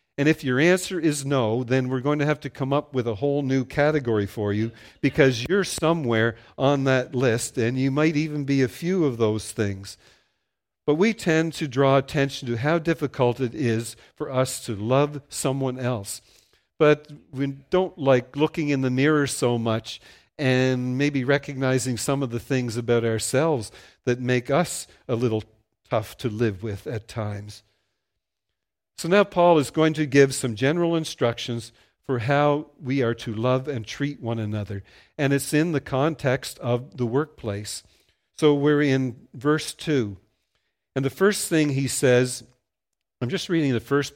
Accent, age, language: American, 50-69, English